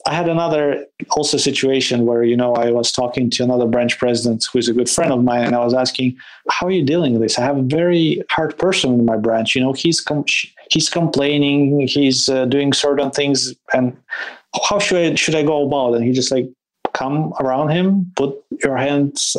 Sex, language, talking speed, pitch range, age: male, English, 215 wpm, 125-145 Hz, 20-39